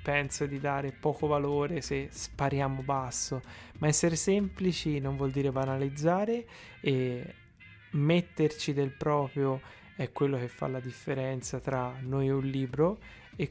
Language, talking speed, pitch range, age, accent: Italian, 140 wpm, 130-160 Hz, 20-39, native